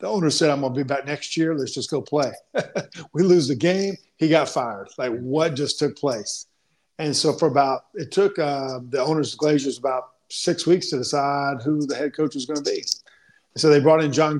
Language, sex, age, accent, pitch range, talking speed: English, male, 50-69, American, 130-155 Hz, 240 wpm